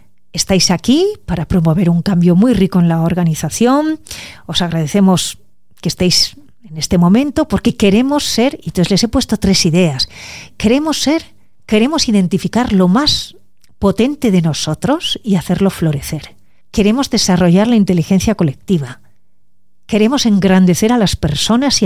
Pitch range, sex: 155-215 Hz, female